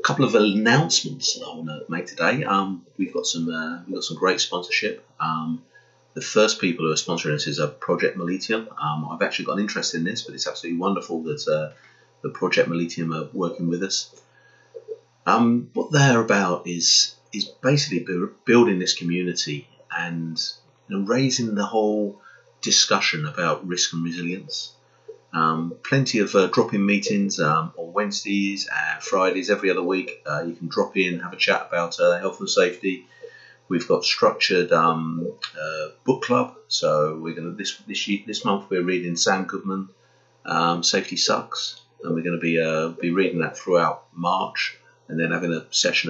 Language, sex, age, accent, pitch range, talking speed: English, male, 30-49, British, 80-105 Hz, 175 wpm